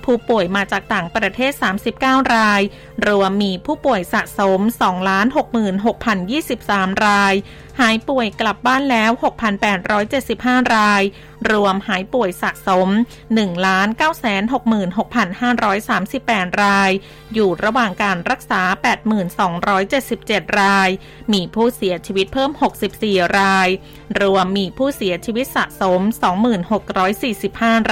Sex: female